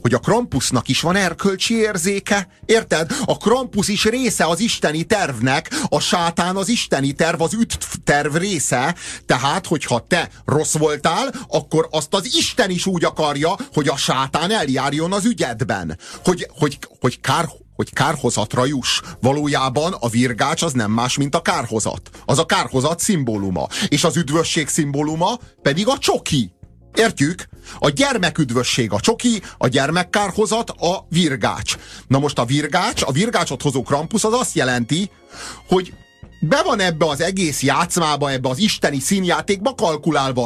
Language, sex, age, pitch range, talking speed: Hungarian, male, 30-49, 125-185 Hz, 150 wpm